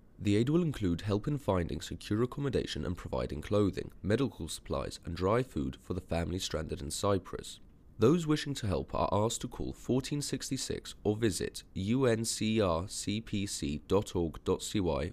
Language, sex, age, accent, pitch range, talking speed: English, male, 30-49, British, 85-115 Hz, 140 wpm